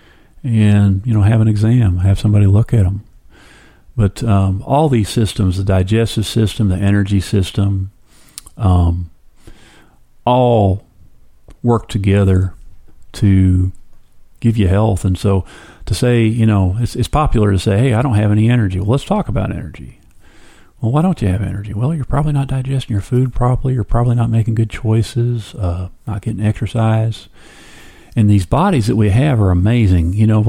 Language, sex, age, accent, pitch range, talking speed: English, male, 40-59, American, 95-120 Hz, 170 wpm